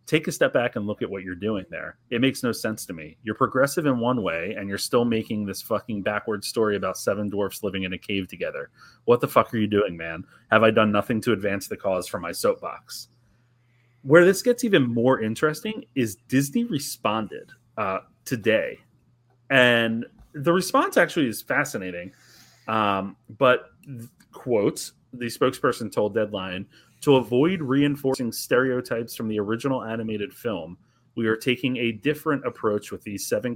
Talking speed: 175 wpm